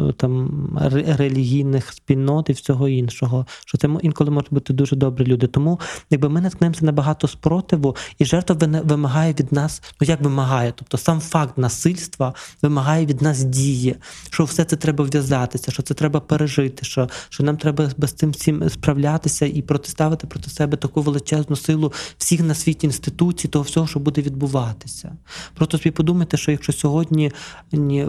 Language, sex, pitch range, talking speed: Ukrainian, male, 135-155 Hz, 170 wpm